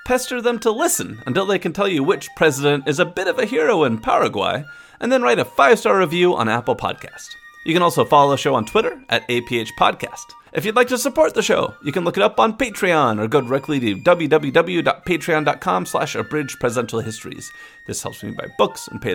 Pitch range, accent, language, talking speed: 145-225 Hz, American, English, 210 wpm